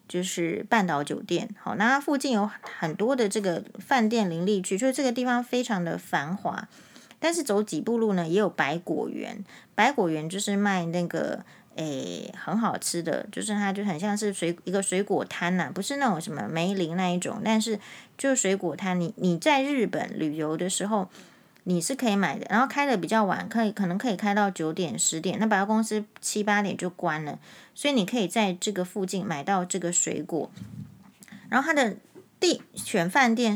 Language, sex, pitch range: Chinese, female, 180-225 Hz